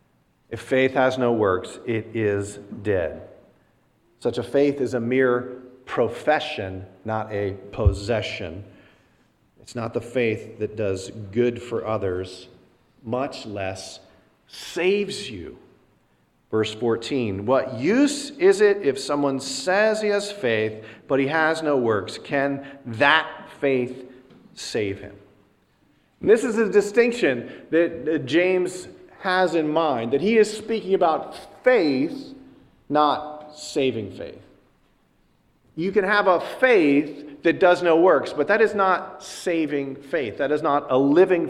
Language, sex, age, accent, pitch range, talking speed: English, male, 40-59, American, 110-175 Hz, 135 wpm